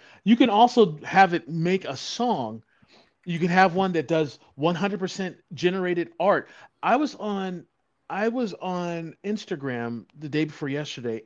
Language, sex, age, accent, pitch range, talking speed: English, male, 40-59, American, 145-190 Hz, 150 wpm